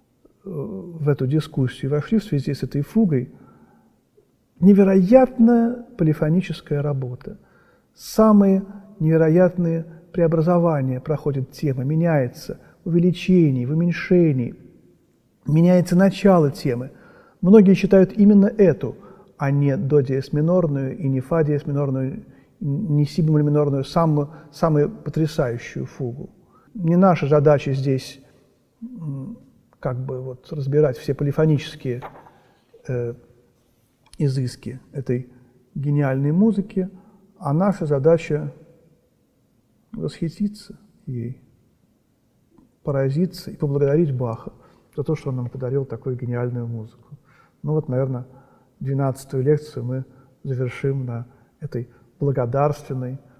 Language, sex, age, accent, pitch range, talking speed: Russian, male, 40-59, native, 130-170 Hz, 100 wpm